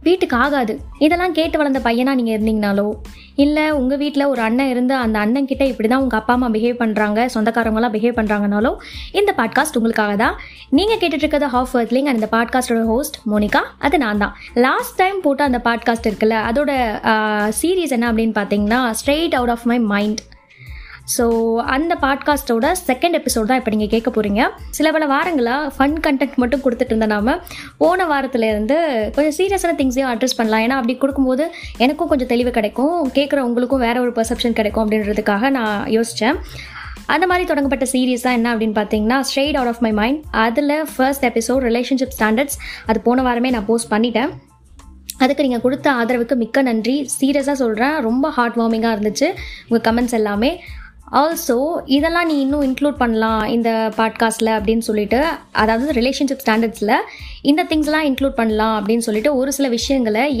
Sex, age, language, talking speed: female, 20-39, Tamil, 155 wpm